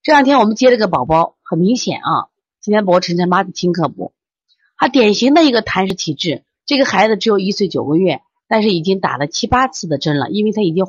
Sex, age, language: female, 30-49, Chinese